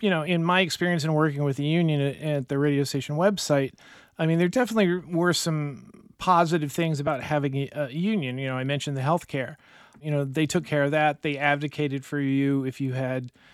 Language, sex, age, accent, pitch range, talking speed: English, male, 40-59, American, 140-170 Hz, 215 wpm